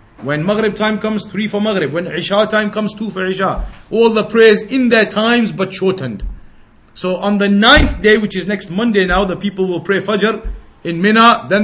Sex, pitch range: male, 175-215 Hz